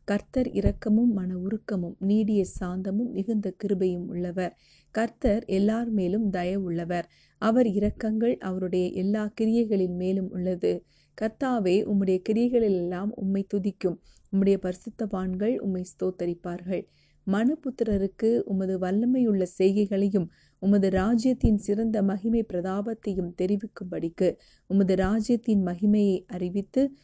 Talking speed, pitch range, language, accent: 90 wpm, 185-215 Hz, Tamil, native